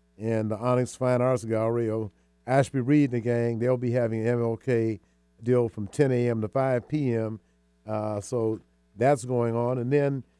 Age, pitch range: 50-69, 110-125 Hz